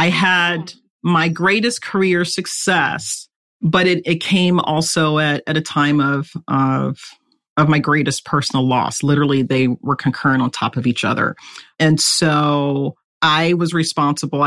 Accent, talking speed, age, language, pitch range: American, 150 wpm, 40-59, English, 135-160 Hz